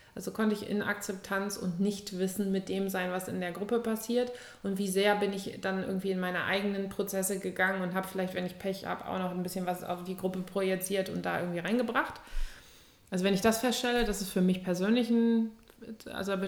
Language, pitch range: German, 195-225 Hz